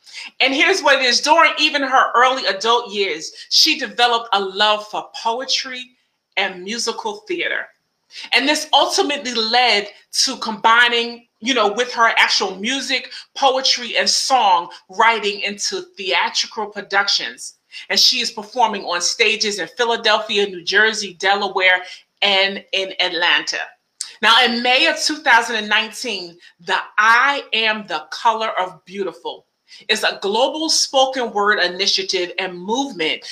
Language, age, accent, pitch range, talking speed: English, 30-49, American, 205-275 Hz, 130 wpm